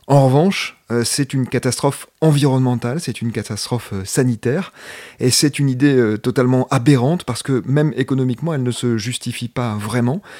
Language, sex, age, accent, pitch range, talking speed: French, male, 30-49, French, 115-135 Hz, 150 wpm